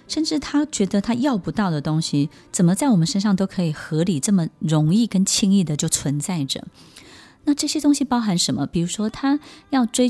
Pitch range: 160-230 Hz